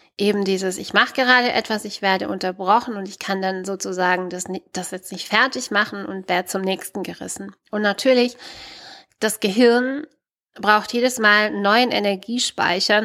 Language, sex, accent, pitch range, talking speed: German, female, German, 195-235 Hz, 160 wpm